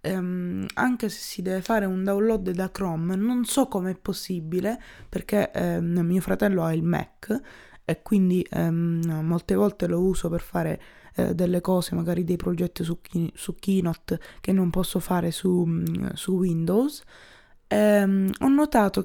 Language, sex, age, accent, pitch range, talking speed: Italian, female, 20-39, native, 175-210 Hz, 140 wpm